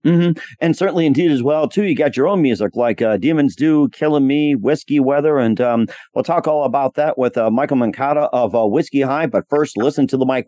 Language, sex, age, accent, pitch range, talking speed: English, male, 50-69, American, 130-160 Hz, 235 wpm